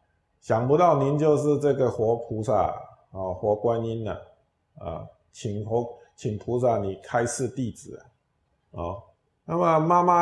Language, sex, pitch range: Chinese, male, 105-140 Hz